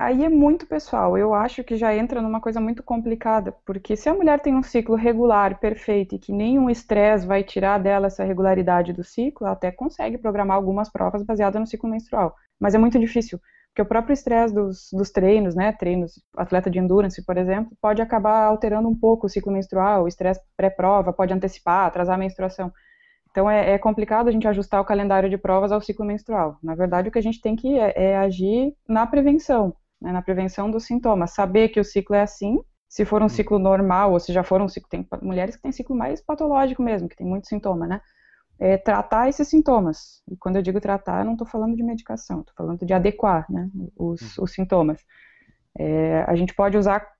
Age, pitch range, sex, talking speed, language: 20-39, 190-225 Hz, female, 215 wpm, Portuguese